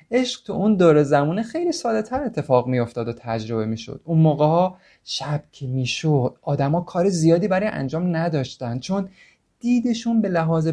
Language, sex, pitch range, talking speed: Persian, male, 125-170 Hz, 160 wpm